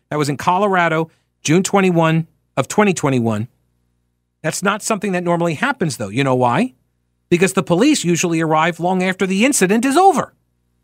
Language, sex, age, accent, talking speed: English, male, 40-59, American, 160 wpm